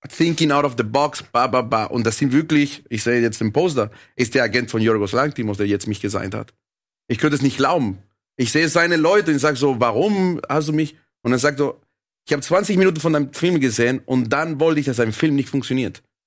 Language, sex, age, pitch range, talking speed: German, male, 30-49, 120-155 Hz, 230 wpm